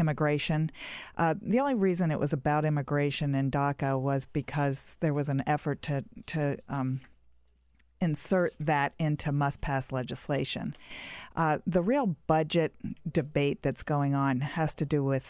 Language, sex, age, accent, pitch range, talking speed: English, female, 40-59, American, 140-160 Hz, 145 wpm